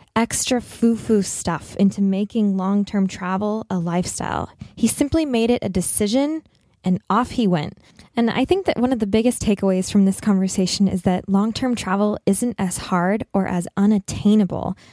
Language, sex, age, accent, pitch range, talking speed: English, female, 10-29, American, 185-230 Hz, 165 wpm